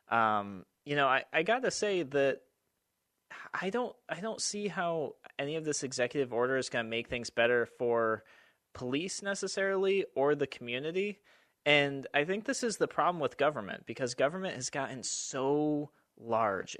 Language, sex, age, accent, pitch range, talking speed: English, male, 30-49, American, 115-160 Hz, 170 wpm